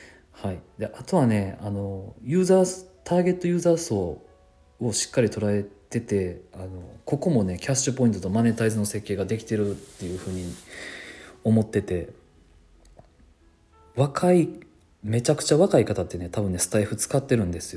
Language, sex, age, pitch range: Japanese, male, 40-59, 90-130 Hz